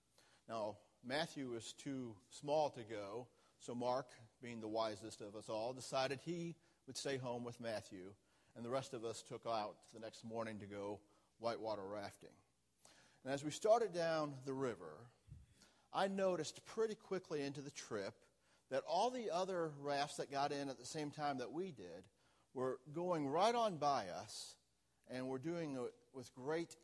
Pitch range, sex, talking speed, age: 115-150 Hz, male, 170 wpm, 40-59